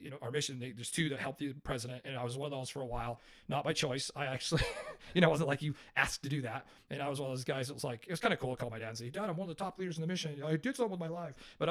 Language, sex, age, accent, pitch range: English, male, 40-59, American, 125-160 Hz